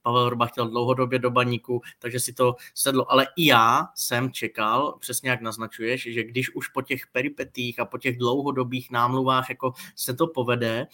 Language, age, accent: Czech, 20-39, native